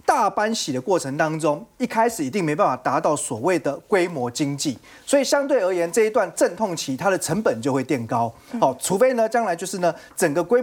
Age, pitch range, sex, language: 30-49, 155-235 Hz, male, Chinese